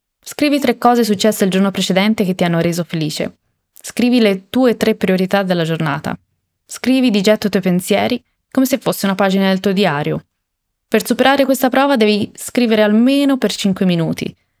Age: 20-39